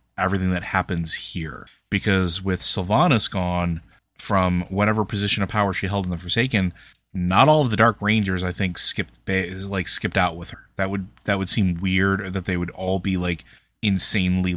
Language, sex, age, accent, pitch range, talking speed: English, male, 30-49, American, 90-100 Hz, 190 wpm